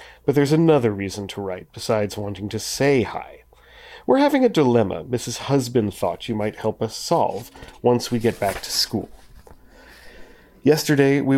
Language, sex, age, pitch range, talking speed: English, male, 40-59, 115-155 Hz, 165 wpm